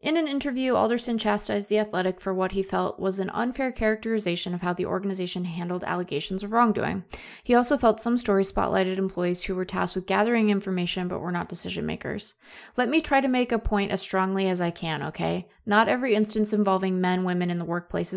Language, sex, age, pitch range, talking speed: English, female, 20-39, 185-240 Hz, 210 wpm